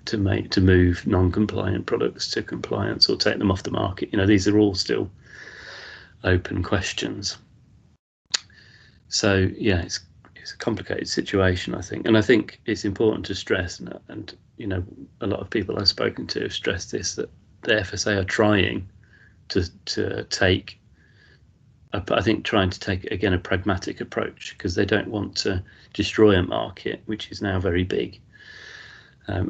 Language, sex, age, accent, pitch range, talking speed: English, male, 30-49, British, 90-100 Hz, 170 wpm